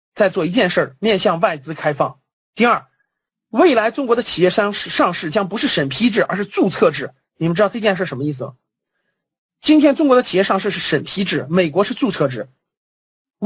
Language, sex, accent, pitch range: Chinese, male, native, 155-245 Hz